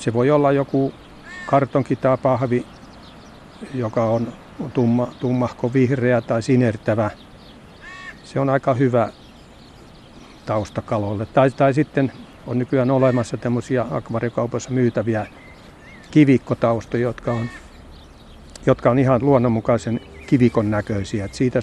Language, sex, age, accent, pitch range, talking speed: Finnish, male, 60-79, native, 105-130 Hz, 100 wpm